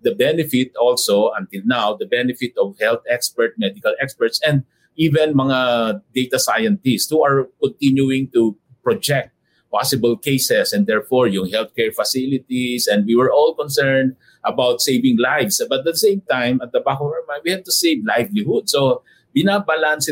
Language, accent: English, Filipino